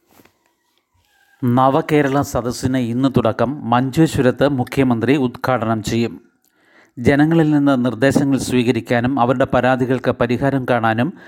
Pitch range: 120-135 Hz